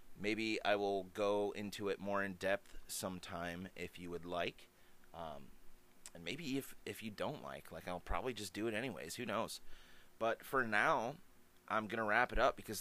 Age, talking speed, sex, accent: 30-49, 190 wpm, male, American